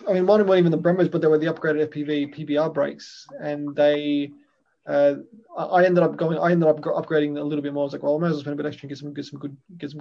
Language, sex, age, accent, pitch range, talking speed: English, male, 20-39, Australian, 145-165 Hz, 300 wpm